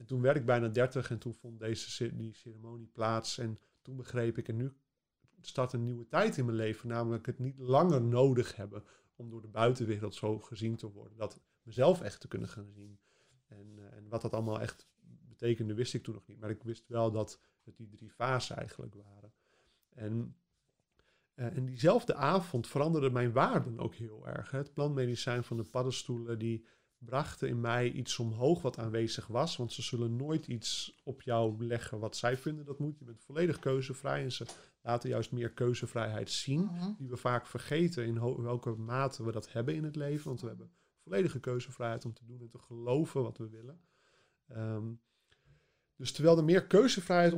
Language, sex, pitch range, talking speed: Dutch, male, 115-135 Hz, 190 wpm